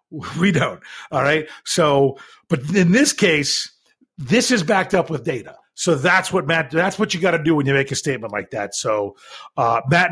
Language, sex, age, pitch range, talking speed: English, male, 40-59, 140-205 Hz, 210 wpm